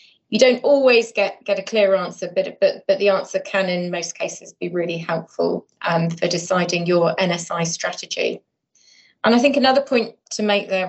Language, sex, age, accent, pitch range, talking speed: English, female, 30-49, British, 180-215 Hz, 185 wpm